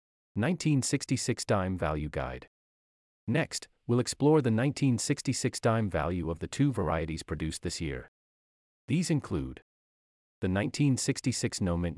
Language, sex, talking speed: English, male, 120 wpm